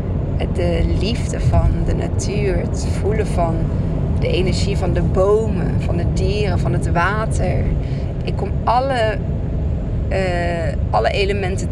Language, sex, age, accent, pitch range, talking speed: Dutch, female, 20-39, Dutch, 80-90 Hz, 130 wpm